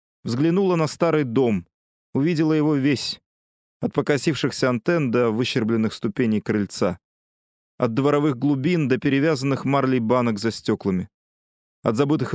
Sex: male